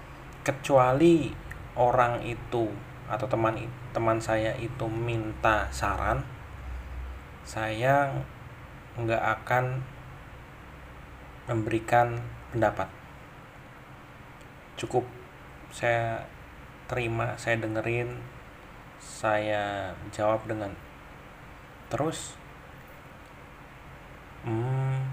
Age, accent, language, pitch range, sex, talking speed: 30-49, native, Indonesian, 110-135 Hz, male, 60 wpm